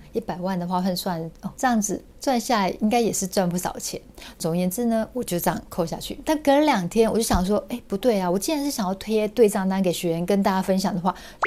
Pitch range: 180-230 Hz